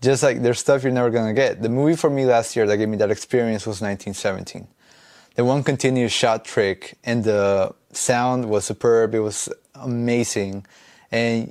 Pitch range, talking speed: 110-125 Hz, 180 wpm